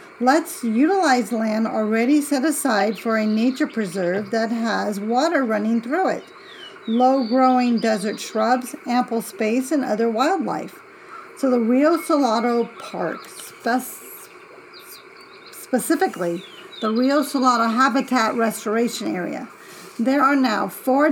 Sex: female